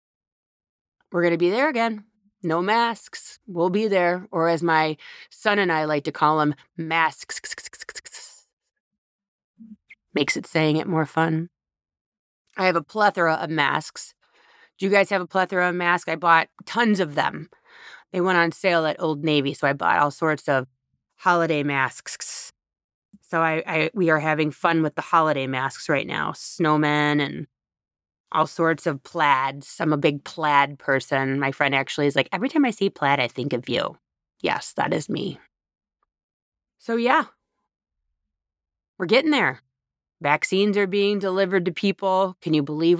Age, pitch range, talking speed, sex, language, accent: 30-49, 155-195 Hz, 165 wpm, female, English, American